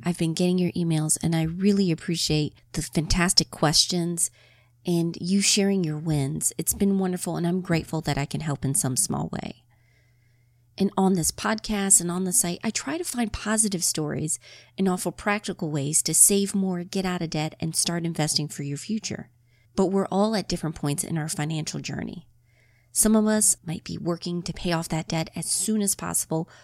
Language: English